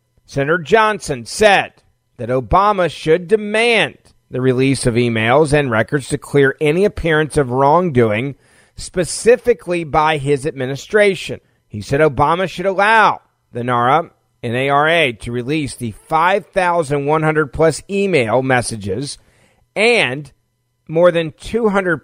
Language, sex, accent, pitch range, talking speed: English, male, American, 125-170 Hz, 115 wpm